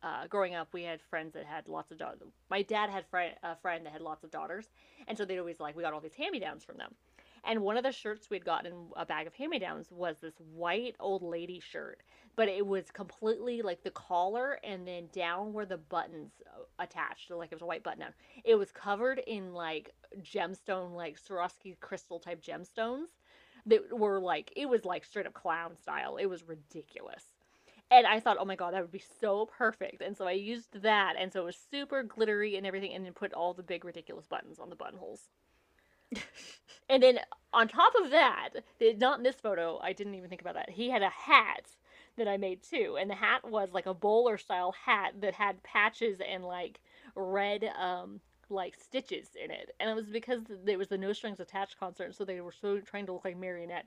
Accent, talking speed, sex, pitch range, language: American, 215 wpm, female, 180-230 Hz, English